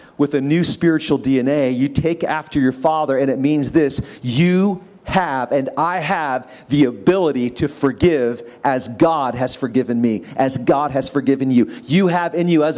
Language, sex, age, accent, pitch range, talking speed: English, male, 40-59, American, 145-195 Hz, 180 wpm